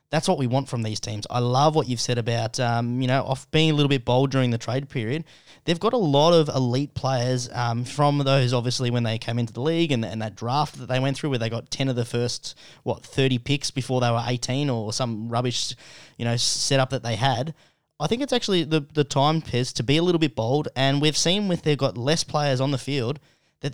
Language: English